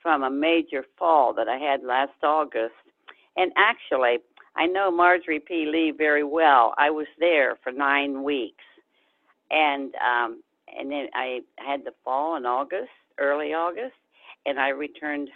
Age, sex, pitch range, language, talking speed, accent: 60-79, female, 140-175 Hz, English, 150 wpm, American